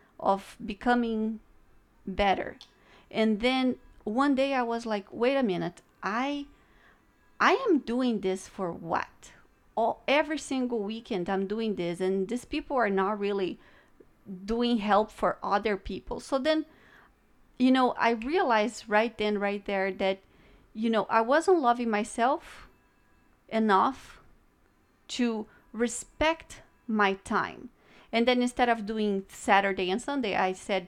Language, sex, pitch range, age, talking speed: English, female, 195-250 Hz, 30-49, 135 wpm